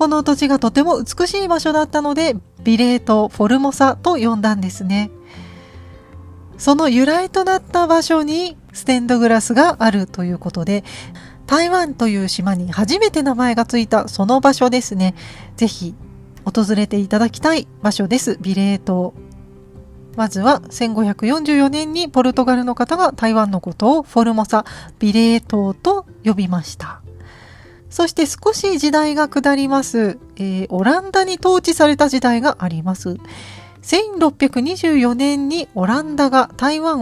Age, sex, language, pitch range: 40-59, female, Japanese, 195-300 Hz